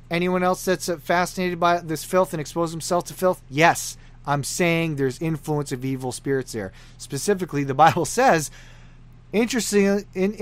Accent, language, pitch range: American, English, 130-185 Hz